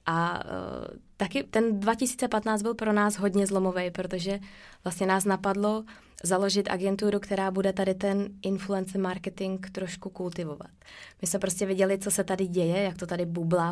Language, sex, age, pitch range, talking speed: Czech, female, 20-39, 180-200 Hz, 160 wpm